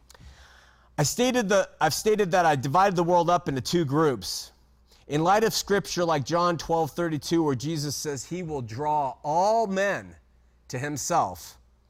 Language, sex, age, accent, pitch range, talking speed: English, male, 40-59, American, 130-200 Hz, 145 wpm